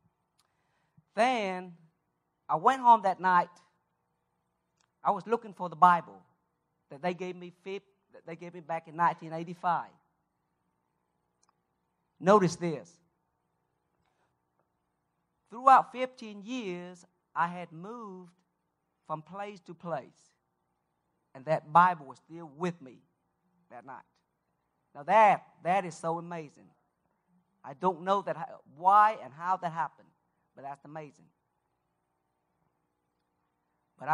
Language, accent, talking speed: English, American, 110 wpm